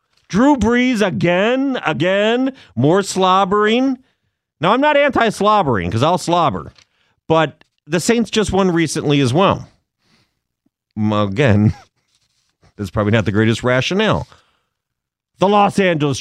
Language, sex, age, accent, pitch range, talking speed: English, male, 40-59, American, 115-195 Hz, 115 wpm